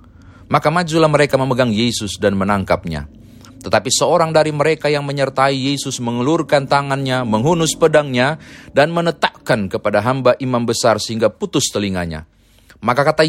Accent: native